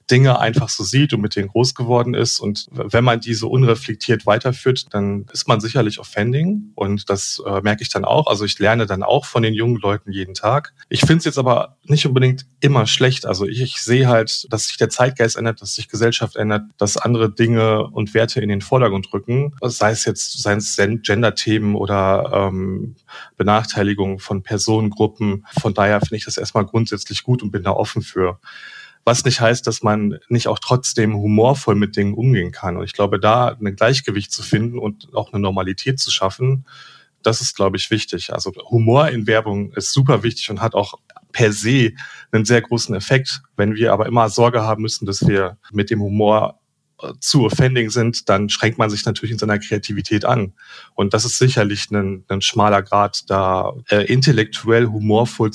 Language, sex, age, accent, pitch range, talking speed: German, male, 30-49, German, 105-120 Hz, 190 wpm